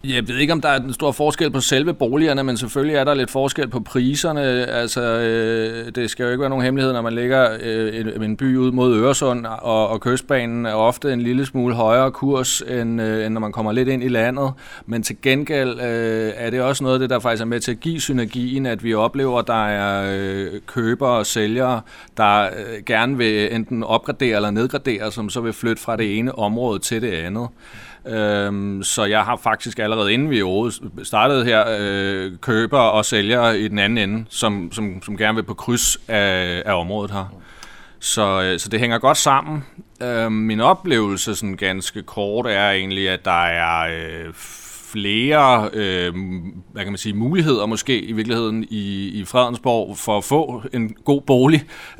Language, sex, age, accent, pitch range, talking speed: Danish, male, 30-49, native, 105-130 Hz, 180 wpm